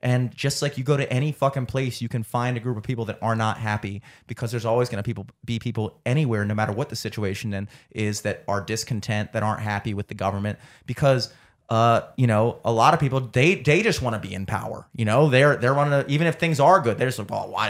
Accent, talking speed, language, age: American, 255 wpm, English, 30-49